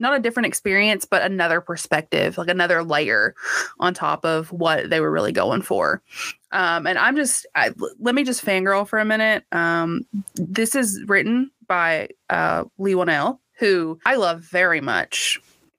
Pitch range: 170-215 Hz